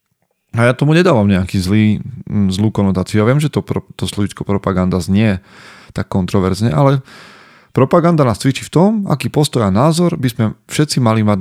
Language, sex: Slovak, male